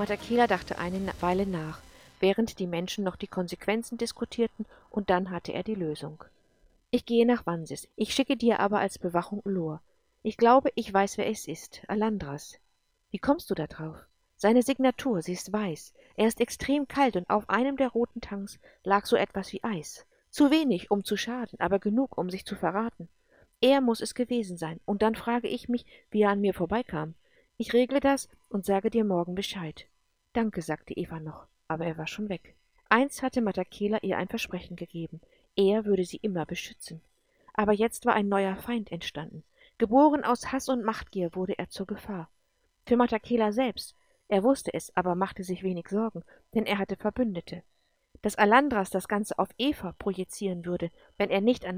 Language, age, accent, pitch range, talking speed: English, 50-69, German, 180-235 Hz, 185 wpm